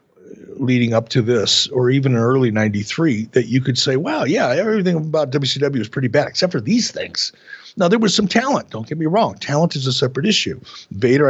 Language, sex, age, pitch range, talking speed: English, male, 60-79, 115-155 Hz, 210 wpm